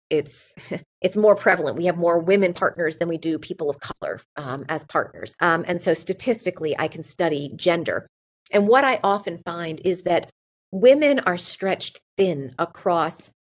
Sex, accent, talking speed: female, American, 170 wpm